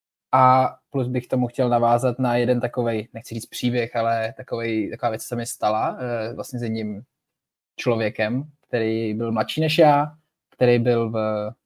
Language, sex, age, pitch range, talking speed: Czech, male, 20-39, 115-130 Hz, 165 wpm